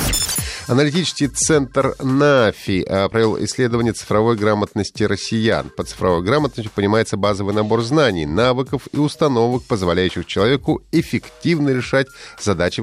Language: Russian